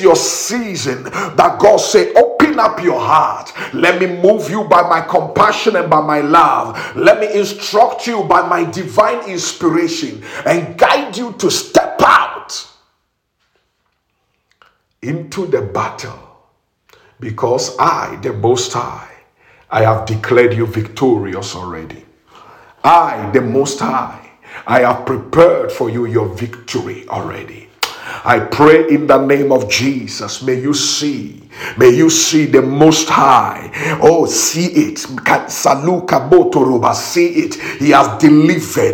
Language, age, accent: English, 50-69, Nigerian